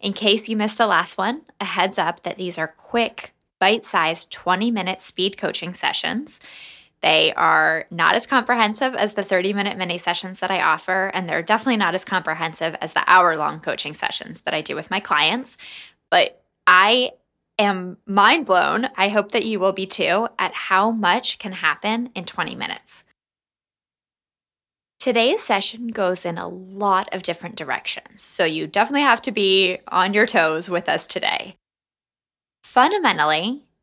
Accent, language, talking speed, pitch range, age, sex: American, English, 160 wpm, 180-225 Hz, 10-29, female